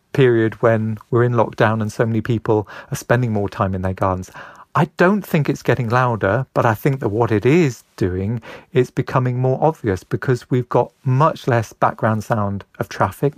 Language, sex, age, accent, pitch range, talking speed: English, male, 40-59, British, 105-130 Hz, 195 wpm